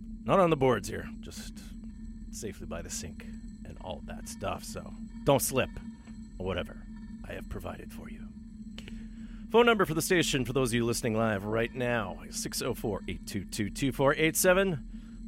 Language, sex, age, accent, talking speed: English, male, 40-59, American, 155 wpm